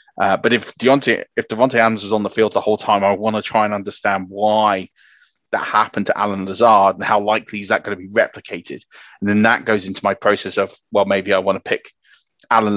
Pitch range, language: 100-110 Hz, English